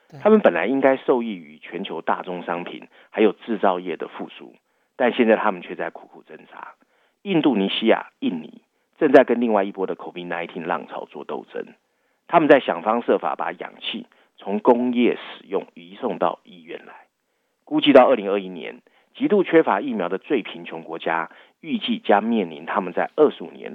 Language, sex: Chinese, male